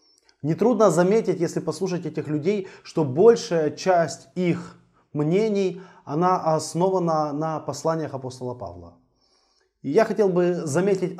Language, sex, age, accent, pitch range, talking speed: Russian, male, 20-39, native, 145-185 Hz, 120 wpm